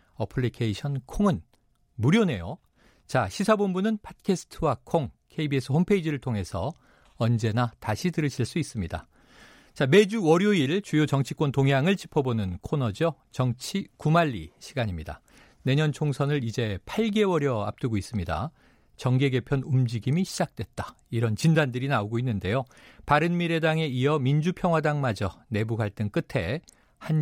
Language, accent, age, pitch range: Korean, native, 40-59, 115-165 Hz